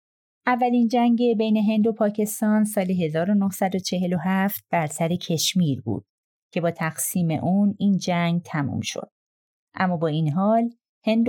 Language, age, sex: Persian, 30-49, female